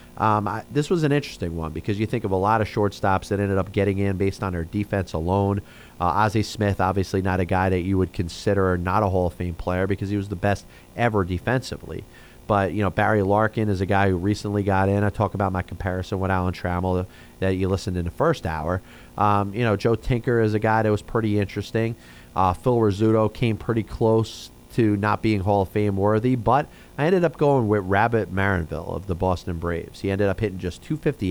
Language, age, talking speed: English, 30-49, 230 wpm